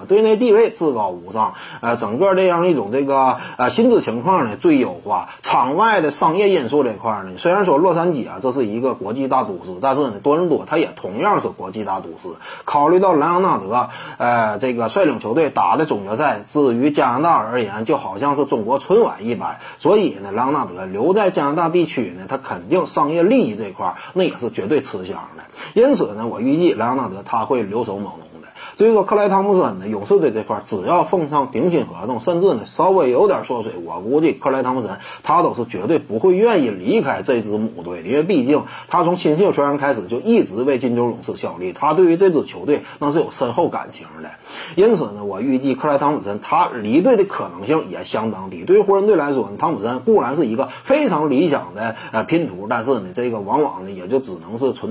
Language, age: Chinese, 30-49